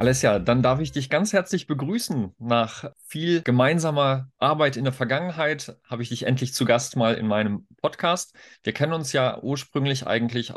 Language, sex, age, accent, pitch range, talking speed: German, male, 40-59, German, 110-135 Hz, 180 wpm